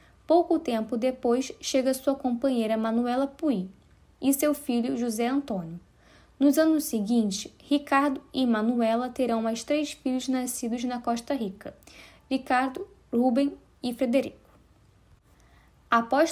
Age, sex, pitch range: 10-29, female, 235-290 Hz